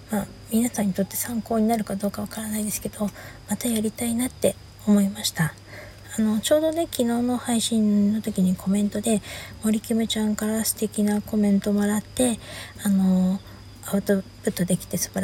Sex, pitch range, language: female, 185-215 Hz, Japanese